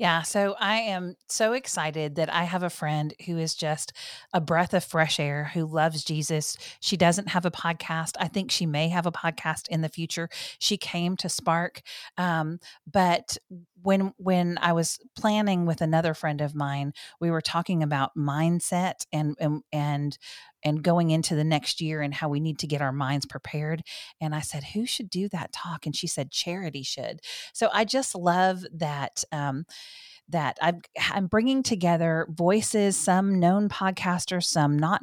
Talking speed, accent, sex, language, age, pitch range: 180 wpm, American, female, English, 40-59, 155-185 Hz